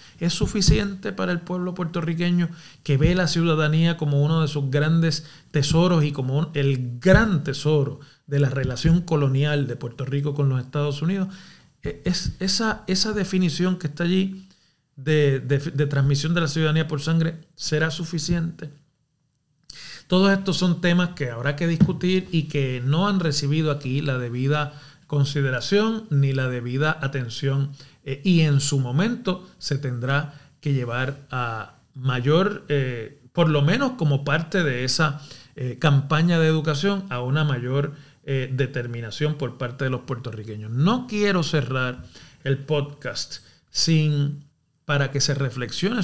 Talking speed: 145 wpm